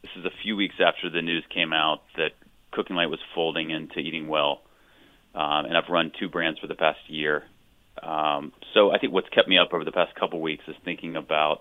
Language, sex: English, male